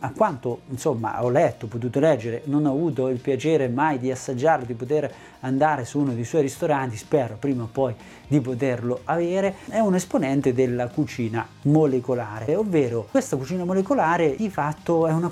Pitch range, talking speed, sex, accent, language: 135-180 Hz, 170 wpm, male, native, Italian